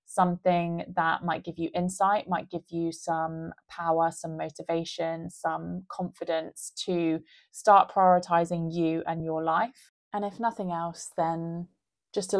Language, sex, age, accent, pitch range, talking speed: English, female, 20-39, British, 165-185 Hz, 140 wpm